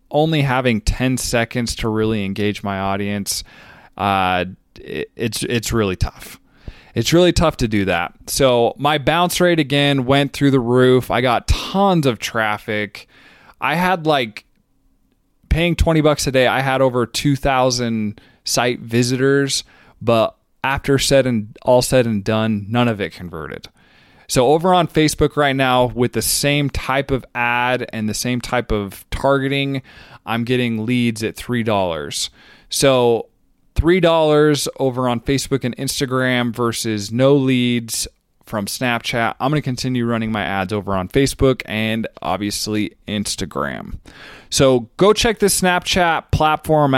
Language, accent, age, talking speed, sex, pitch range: English, American, 20-39, 145 wpm, male, 110-140 Hz